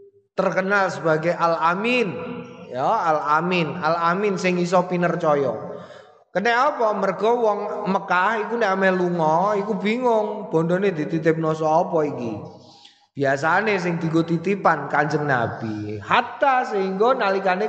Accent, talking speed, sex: native, 115 wpm, male